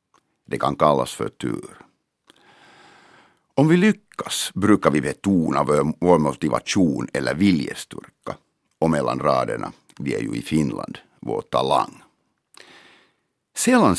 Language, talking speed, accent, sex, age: German, 110 wpm, Finnish, male, 60-79